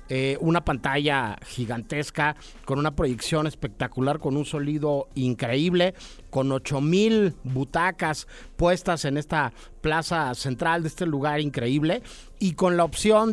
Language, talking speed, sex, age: Spanish, 125 wpm, male, 50-69